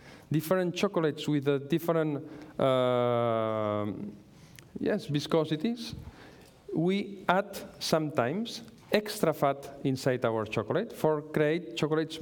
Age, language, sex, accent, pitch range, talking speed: 50-69, English, male, Spanish, 125-175 Hz, 95 wpm